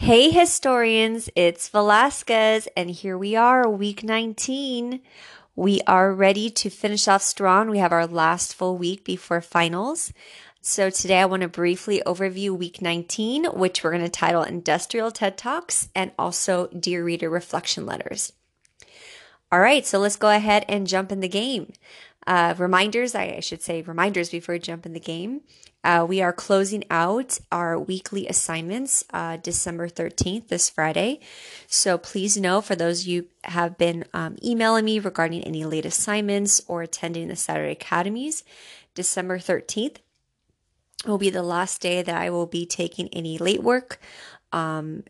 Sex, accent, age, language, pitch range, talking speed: female, American, 30-49, English, 170-210 Hz, 160 wpm